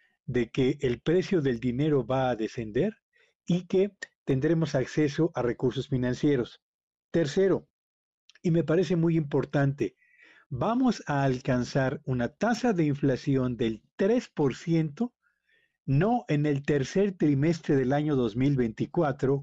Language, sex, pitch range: Spanish, male, 130-175 Hz